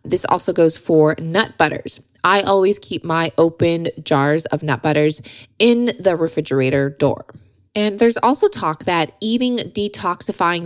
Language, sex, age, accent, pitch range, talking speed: English, female, 20-39, American, 150-195 Hz, 145 wpm